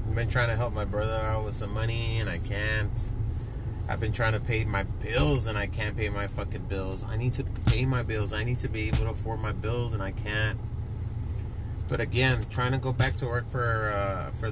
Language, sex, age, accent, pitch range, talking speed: English, male, 30-49, American, 105-120 Hz, 235 wpm